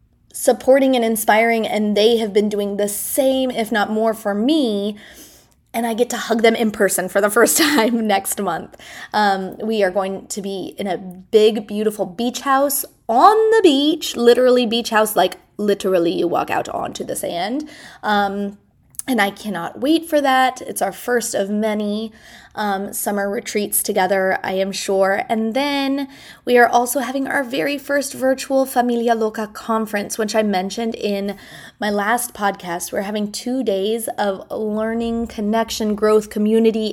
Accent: American